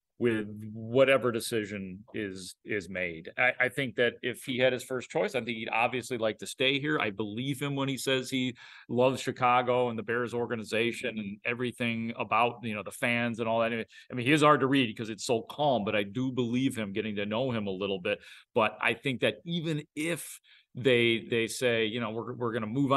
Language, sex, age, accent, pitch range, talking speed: English, male, 40-59, American, 115-140 Hz, 225 wpm